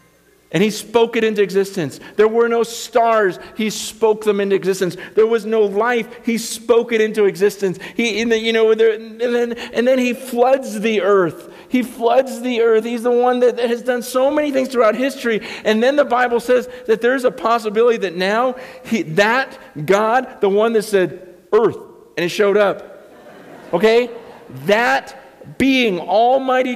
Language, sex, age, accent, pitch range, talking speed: English, male, 50-69, American, 215-255 Hz, 180 wpm